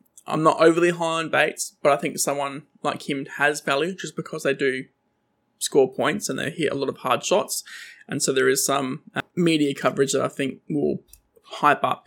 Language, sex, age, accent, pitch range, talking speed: English, male, 20-39, Australian, 140-185 Hz, 210 wpm